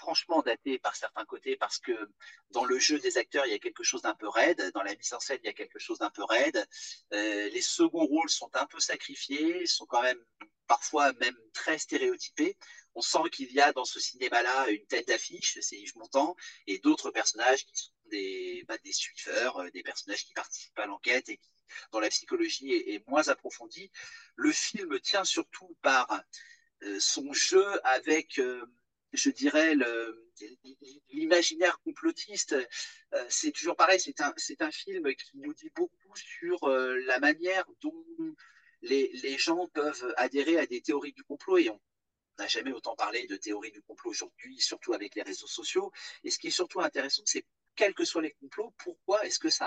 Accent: French